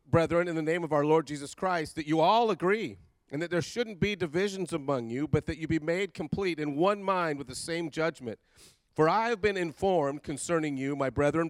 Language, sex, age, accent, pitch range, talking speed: English, male, 50-69, American, 130-170 Hz, 225 wpm